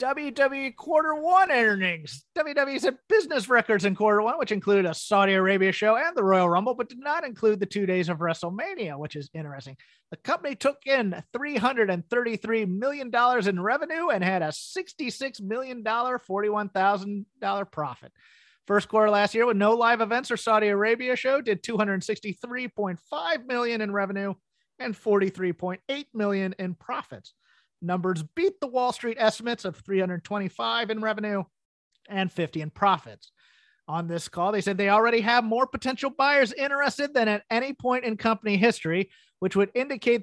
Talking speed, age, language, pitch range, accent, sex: 175 wpm, 30-49, English, 185-245 Hz, American, male